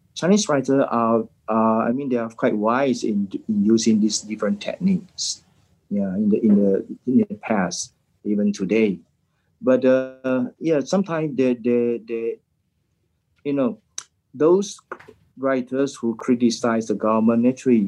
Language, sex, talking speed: English, male, 140 wpm